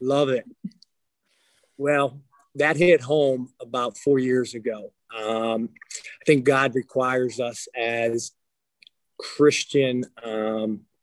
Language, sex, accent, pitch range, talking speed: English, male, American, 120-135 Hz, 105 wpm